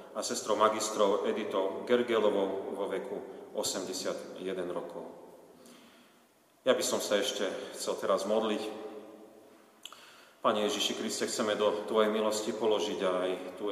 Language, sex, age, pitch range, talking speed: Slovak, male, 40-59, 95-115 Hz, 120 wpm